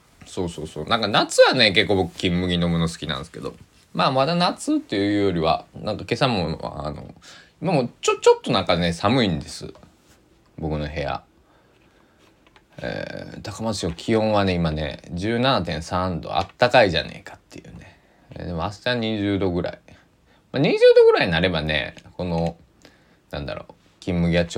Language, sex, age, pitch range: Japanese, male, 20-39, 80-110 Hz